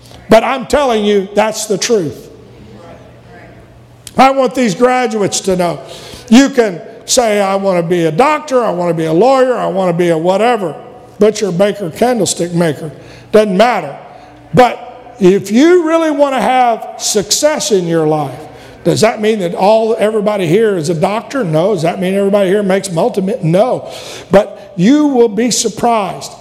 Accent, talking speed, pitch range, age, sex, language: American, 170 wpm, 185-235 Hz, 60-79, male, English